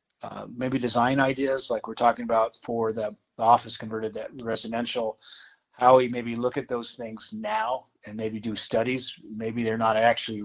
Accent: American